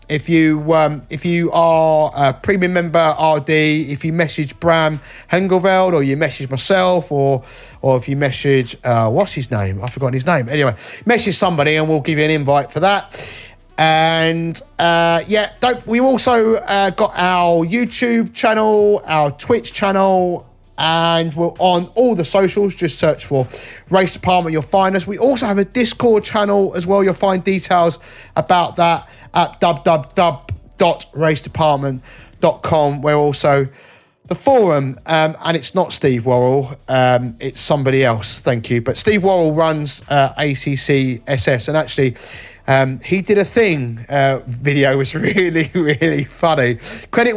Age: 30-49